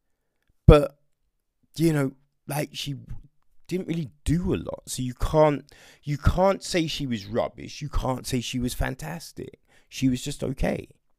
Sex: male